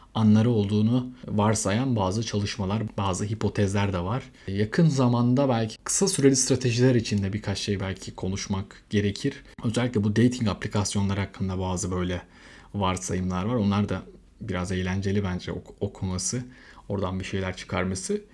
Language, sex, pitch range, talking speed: Turkish, male, 100-125 Hz, 130 wpm